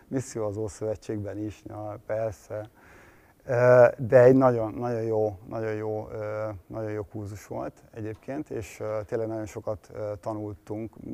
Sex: male